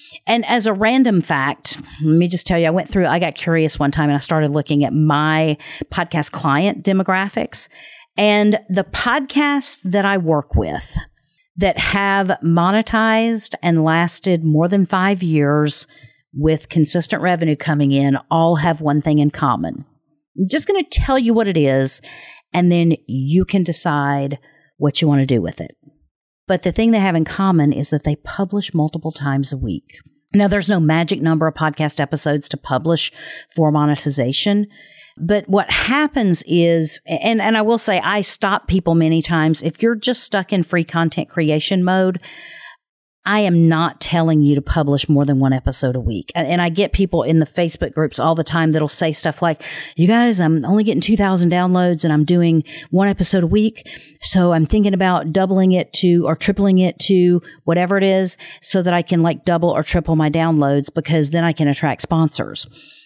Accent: American